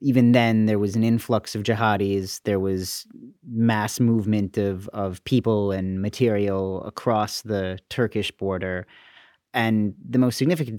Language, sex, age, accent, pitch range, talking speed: English, male, 30-49, American, 95-115 Hz, 140 wpm